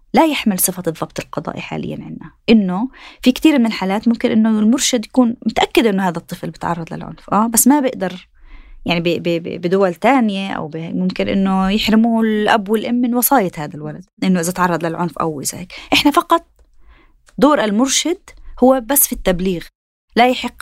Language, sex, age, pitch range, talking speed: Arabic, female, 20-39, 185-245 Hz, 165 wpm